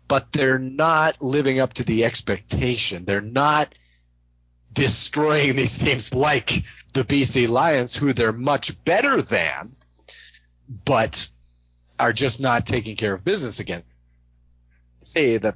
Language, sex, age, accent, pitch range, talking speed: English, male, 40-59, American, 80-130 Hz, 125 wpm